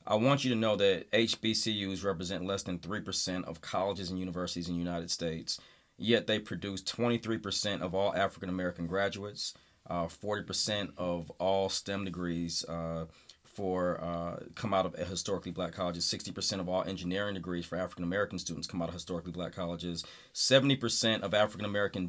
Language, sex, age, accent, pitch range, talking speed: English, male, 40-59, American, 90-105 Hz, 160 wpm